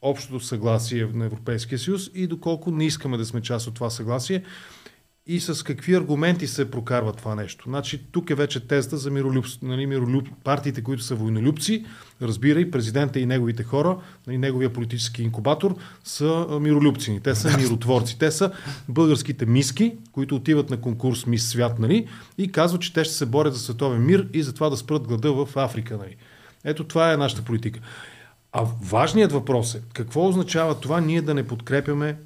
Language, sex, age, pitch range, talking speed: Bulgarian, male, 30-49, 120-155 Hz, 175 wpm